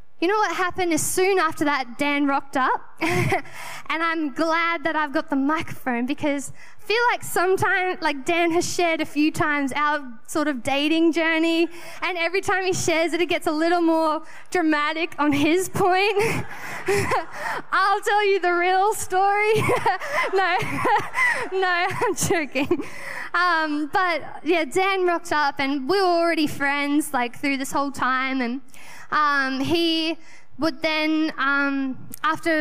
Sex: female